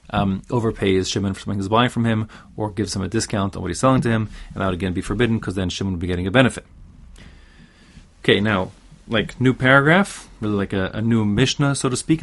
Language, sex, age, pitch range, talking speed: English, male, 30-49, 95-120 Hz, 235 wpm